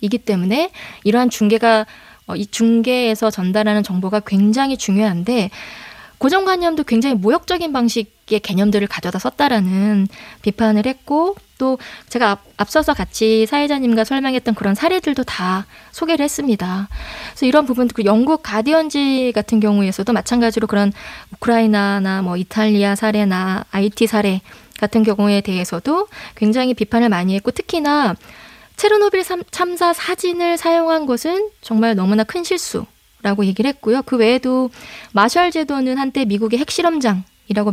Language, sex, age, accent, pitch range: Korean, female, 20-39, native, 210-280 Hz